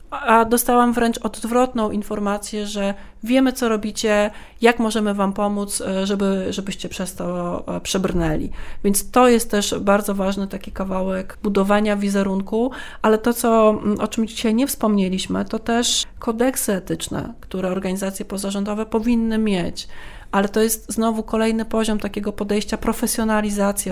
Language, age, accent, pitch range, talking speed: Polish, 30-49, native, 190-215 Hz, 130 wpm